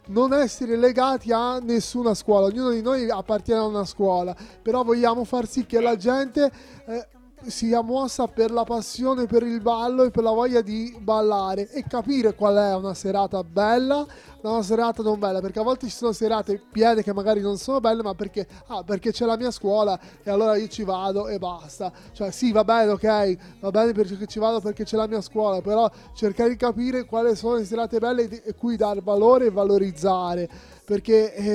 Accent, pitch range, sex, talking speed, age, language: native, 210-245 Hz, male, 200 wpm, 20-39, Italian